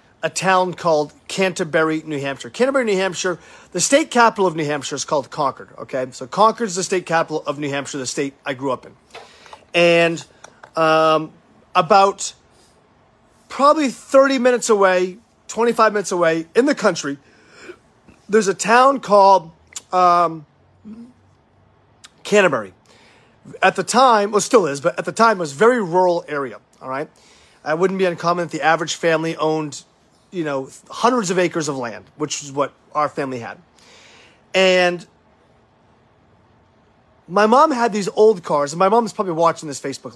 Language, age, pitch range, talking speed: English, 40-59, 150-215 Hz, 160 wpm